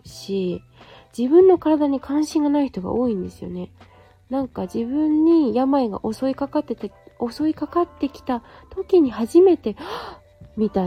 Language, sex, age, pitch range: Japanese, female, 20-39, 190-275 Hz